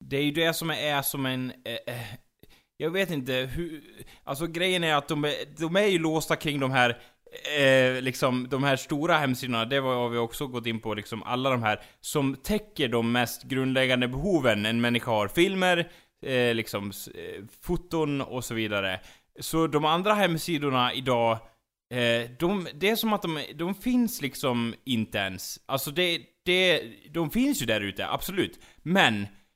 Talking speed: 175 wpm